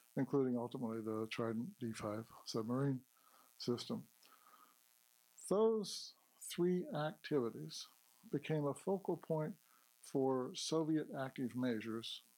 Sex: male